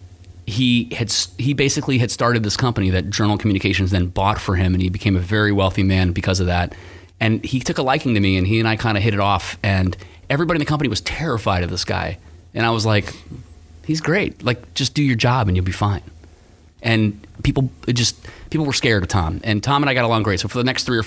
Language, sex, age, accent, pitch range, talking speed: English, male, 30-49, American, 90-115 Hz, 250 wpm